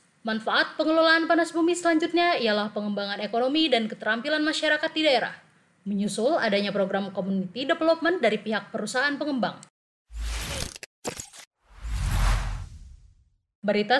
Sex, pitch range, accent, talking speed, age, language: female, 195-275 Hz, native, 100 wpm, 20-39, Indonesian